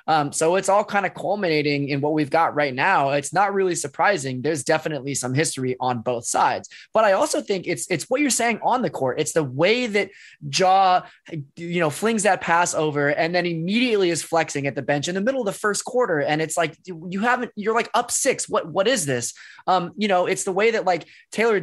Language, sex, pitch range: English, male, 150-200 Hz